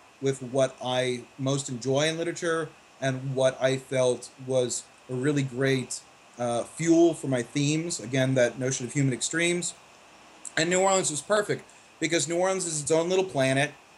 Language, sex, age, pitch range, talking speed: English, male, 30-49, 130-155 Hz, 160 wpm